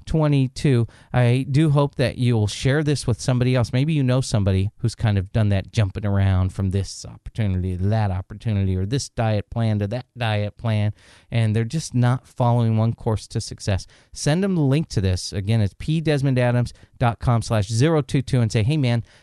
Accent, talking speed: American, 185 wpm